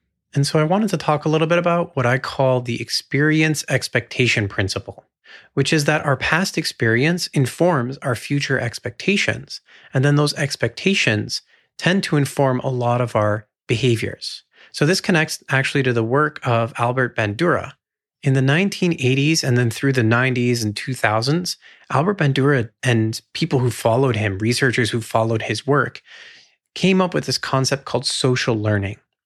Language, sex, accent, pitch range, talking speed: English, male, American, 120-160 Hz, 160 wpm